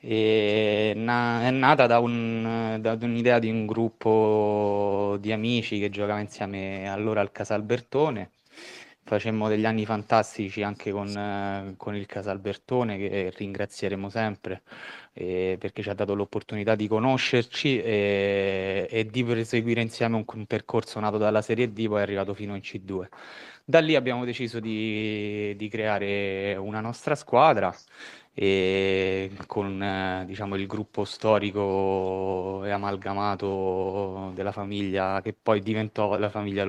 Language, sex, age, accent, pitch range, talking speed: Italian, male, 20-39, native, 100-110 Hz, 130 wpm